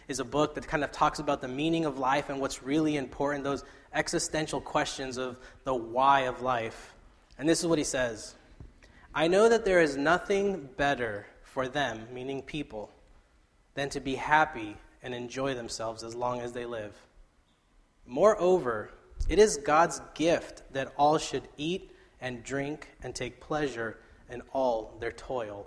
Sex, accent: male, American